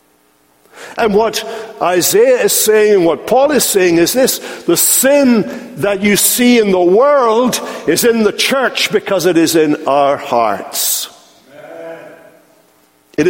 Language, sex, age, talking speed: English, male, 60-79, 140 wpm